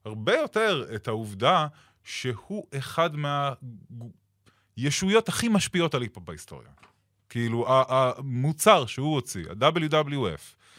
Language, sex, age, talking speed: Hebrew, male, 20-39, 95 wpm